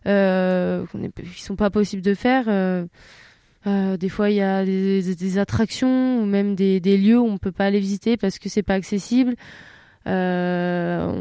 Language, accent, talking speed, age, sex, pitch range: English, French, 185 wpm, 20-39, female, 185-210 Hz